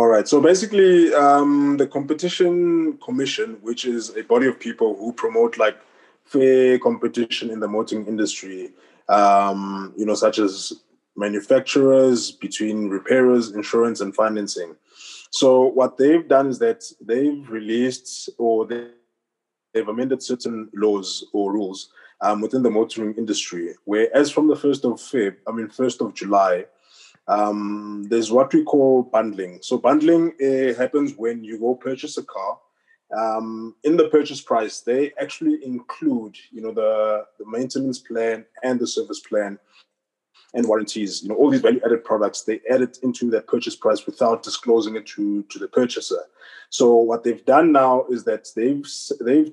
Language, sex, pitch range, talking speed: English, male, 110-140 Hz, 160 wpm